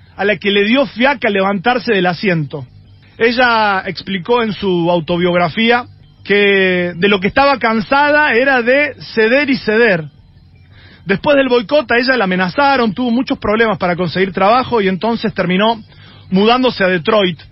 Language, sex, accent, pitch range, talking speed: Spanish, male, Argentinian, 180-245 Hz, 150 wpm